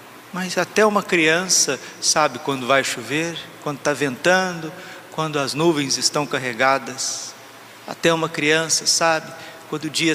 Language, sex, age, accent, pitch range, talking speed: Portuguese, male, 40-59, Brazilian, 145-170 Hz, 135 wpm